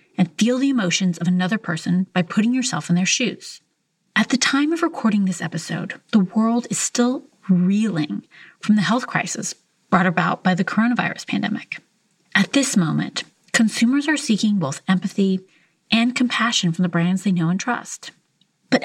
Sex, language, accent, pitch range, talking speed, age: female, English, American, 180-235 Hz, 170 wpm, 30-49